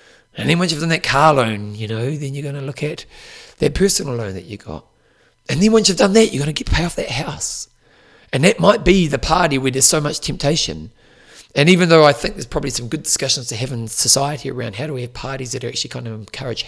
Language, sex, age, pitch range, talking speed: English, male, 40-59, 115-160 Hz, 265 wpm